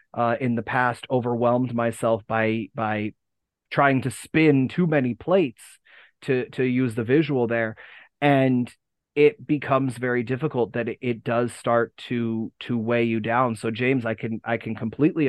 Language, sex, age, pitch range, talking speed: English, male, 30-49, 115-130 Hz, 160 wpm